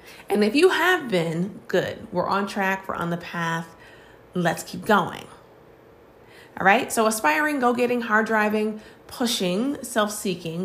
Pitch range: 180-230 Hz